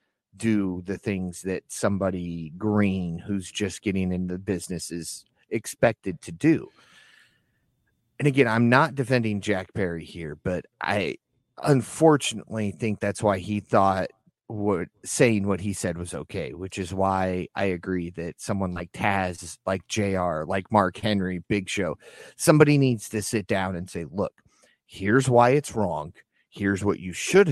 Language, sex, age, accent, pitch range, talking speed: English, male, 30-49, American, 90-110 Hz, 155 wpm